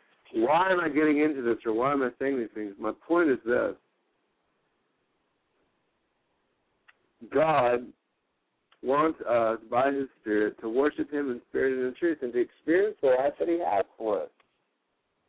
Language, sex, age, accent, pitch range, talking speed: English, male, 60-79, American, 140-195 Hz, 160 wpm